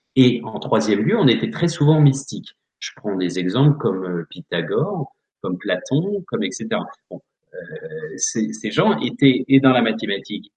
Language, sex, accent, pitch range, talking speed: French, male, French, 90-145 Hz, 165 wpm